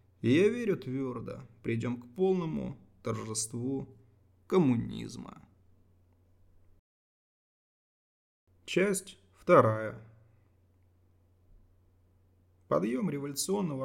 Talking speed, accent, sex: 50 wpm, native, male